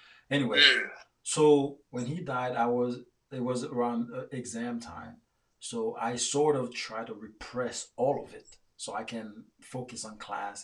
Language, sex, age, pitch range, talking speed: English, male, 30-49, 115-145 Hz, 160 wpm